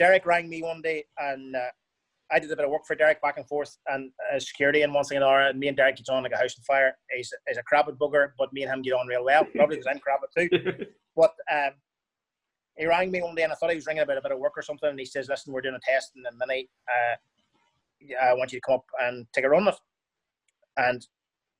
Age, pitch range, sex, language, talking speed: 30-49, 145-215 Hz, male, English, 275 wpm